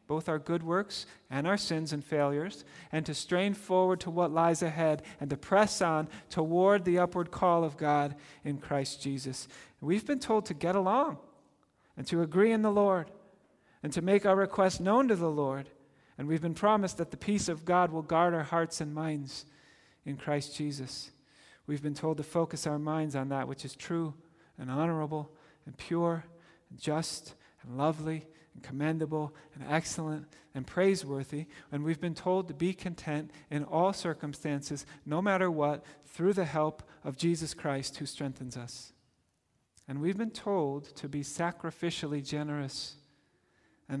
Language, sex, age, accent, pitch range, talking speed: English, male, 40-59, American, 145-175 Hz, 170 wpm